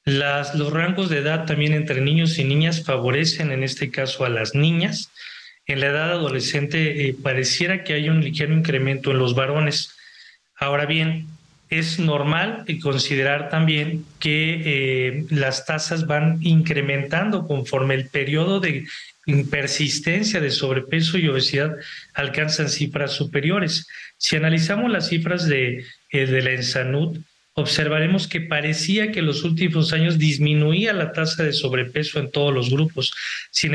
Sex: male